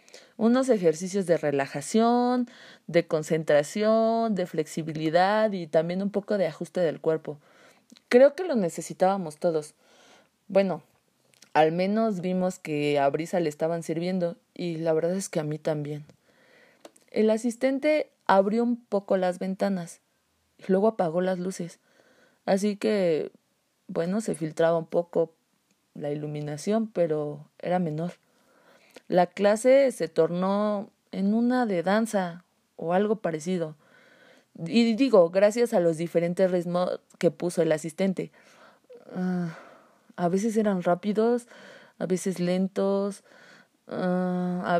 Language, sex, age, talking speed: Spanish, female, 30-49, 125 wpm